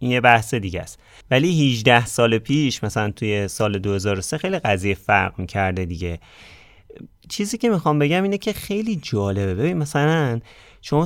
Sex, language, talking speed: male, Persian, 155 wpm